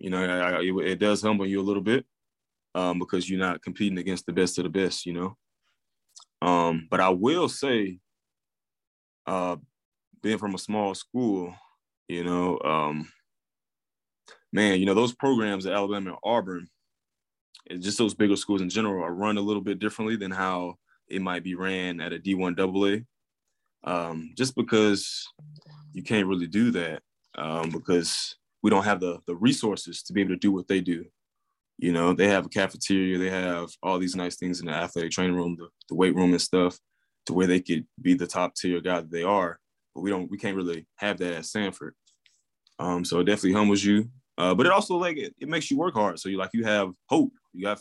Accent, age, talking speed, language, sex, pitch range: American, 20-39, 200 wpm, English, male, 90-100 Hz